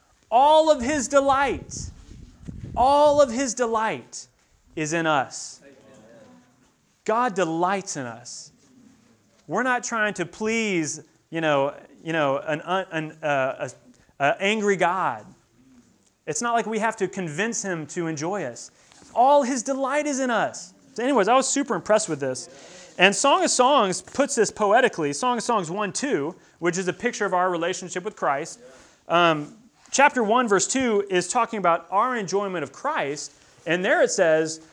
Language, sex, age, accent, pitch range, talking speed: English, male, 30-49, American, 165-260 Hz, 160 wpm